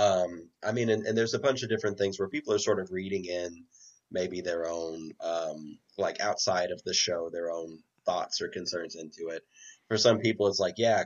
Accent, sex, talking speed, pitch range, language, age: American, male, 215 wpm, 85-110 Hz, English, 30-49